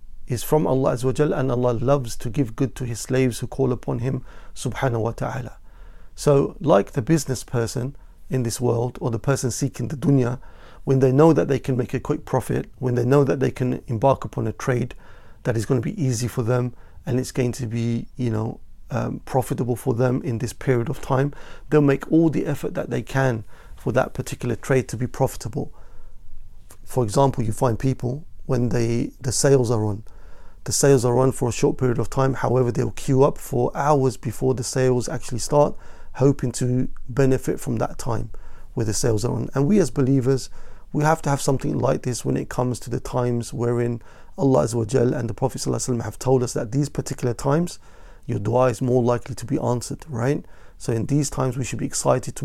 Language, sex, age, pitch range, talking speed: English, male, 40-59, 120-135 Hz, 205 wpm